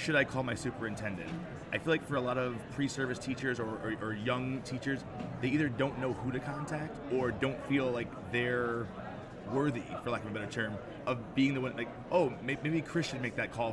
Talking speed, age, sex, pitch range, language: 220 wpm, 20-39, male, 115-140 Hz, English